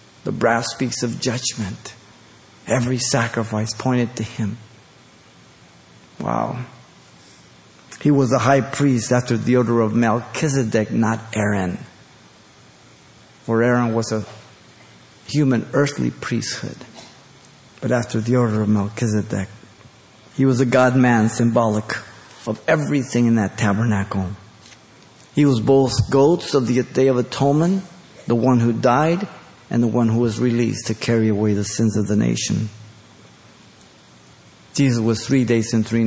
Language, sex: English, male